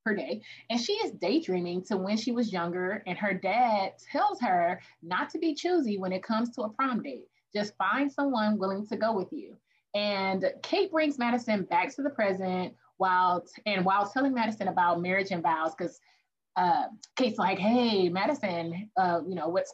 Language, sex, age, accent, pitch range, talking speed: English, female, 30-49, American, 185-275 Hz, 190 wpm